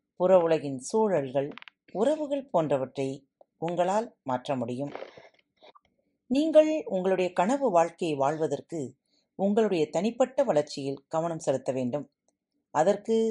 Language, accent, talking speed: Tamil, native, 90 wpm